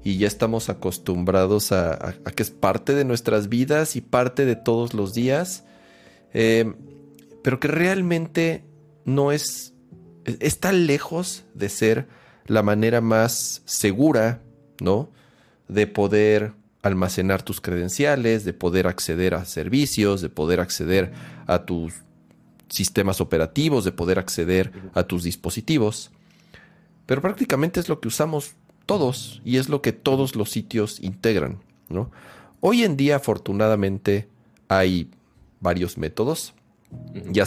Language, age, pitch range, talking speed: Spanish, 40-59, 90-120 Hz, 130 wpm